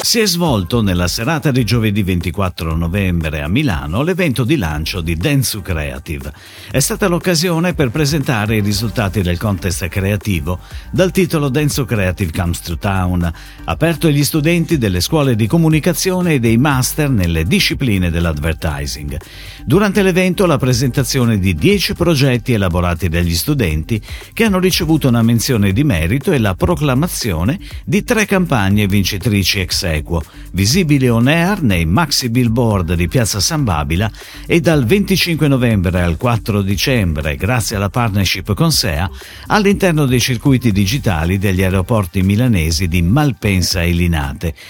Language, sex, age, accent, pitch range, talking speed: Italian, male, 50-69, native, 90-155 Hz, 140 wpm